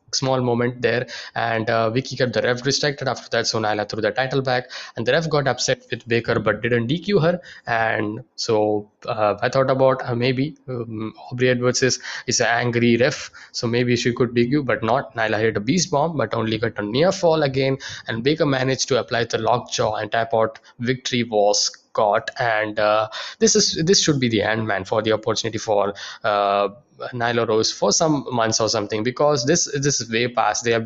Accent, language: Indian, English